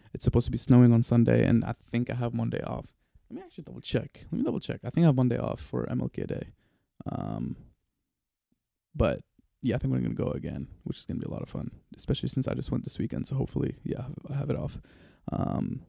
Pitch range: 120-140 Hz